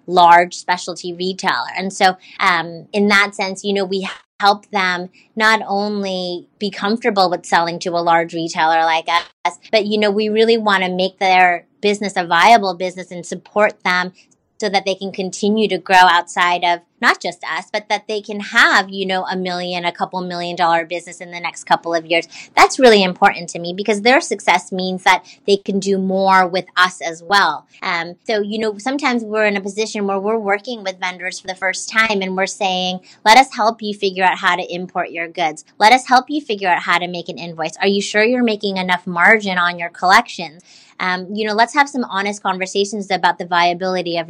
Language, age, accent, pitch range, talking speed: English, 30-49, American, 175-210 Hz, 215 wpm